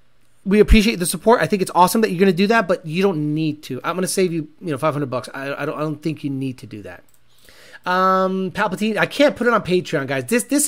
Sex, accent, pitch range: male, American, 150-210 Hz